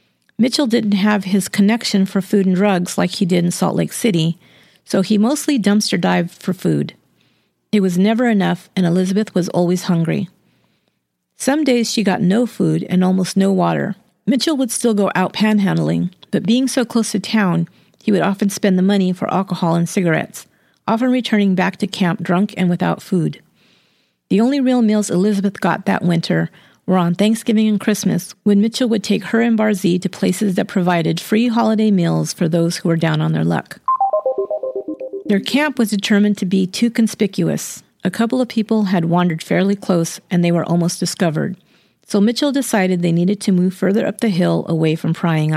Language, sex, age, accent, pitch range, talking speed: English, female, 50-69, American, 175-215 Hz, 190 wpm